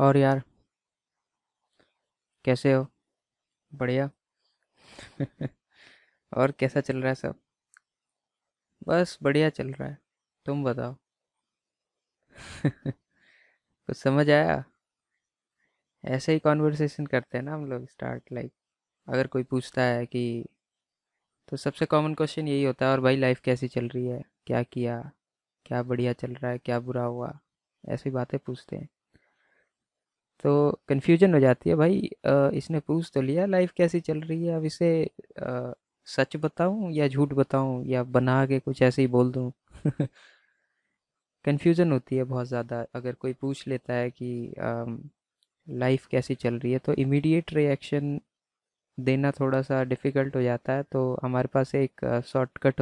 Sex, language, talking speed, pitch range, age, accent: female, Hindi, 145 wpm, 125-145 Hz, 20-39, native